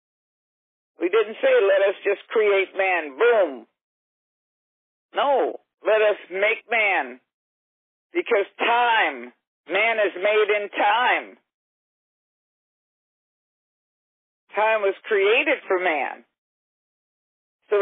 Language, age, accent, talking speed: English, 50-69, American, 90 wpm